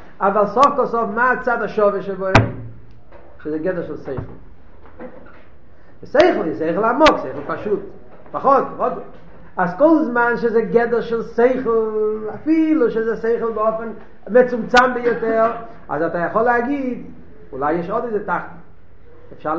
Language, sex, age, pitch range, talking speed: Hebrew, male, 50-69, 200-255 Hz, 130 wpm